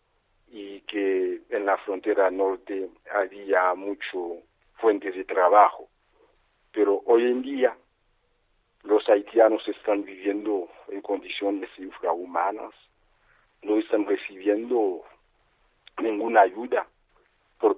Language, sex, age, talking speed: Spanish, male, 50-69, 95 wpm